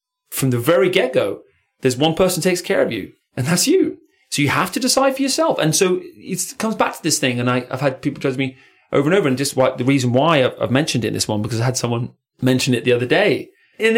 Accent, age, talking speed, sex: British, 30-49, 260 wpm, male